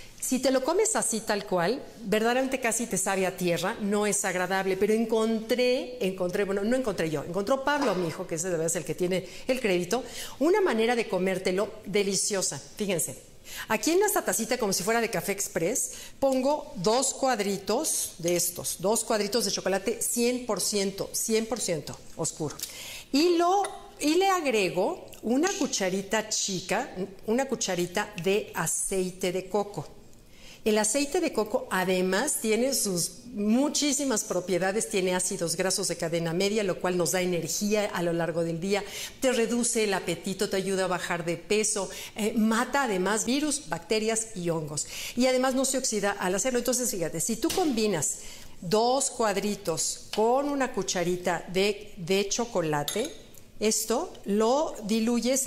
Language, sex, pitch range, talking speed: Spanish, female, 185-245 Hz, 155 wpm